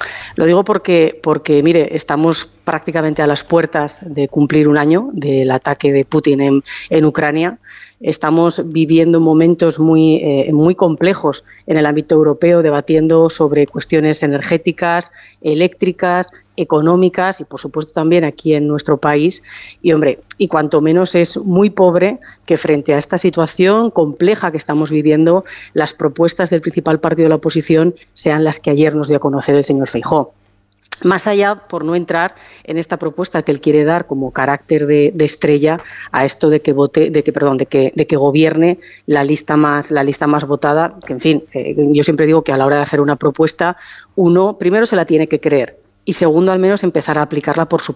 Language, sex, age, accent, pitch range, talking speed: Spanish, female, 40-59, Spanish, 150-170 Hz, 185 wpm